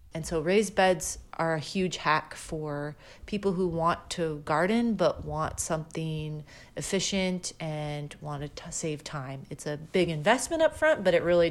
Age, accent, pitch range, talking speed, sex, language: 30-49, American, 150-185 Hz, 165 wpm, female, English